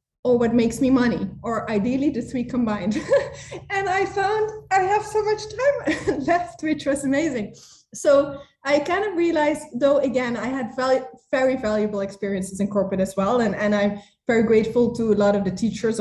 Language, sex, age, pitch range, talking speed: English, female, 20-39, 205-265 Hz, 185 wpm